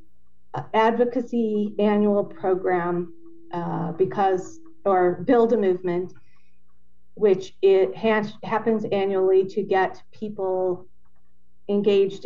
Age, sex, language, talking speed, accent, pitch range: 40-59, female, English, 85 wpm, American, 180-220 Hz